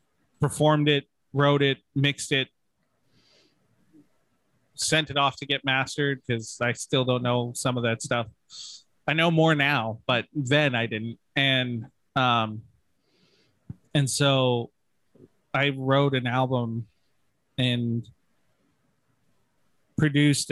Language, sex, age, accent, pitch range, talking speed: English, male, 30-49, American, 115-140 Hz, 115 wpm